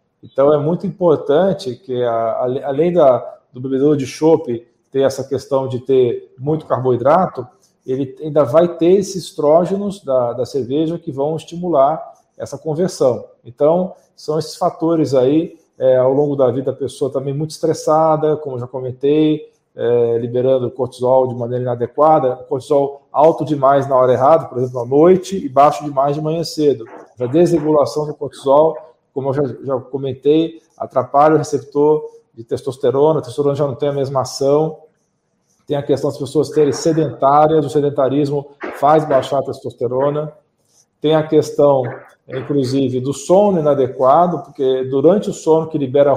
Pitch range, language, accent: 135-160 Hz, Portuguese, Brazilian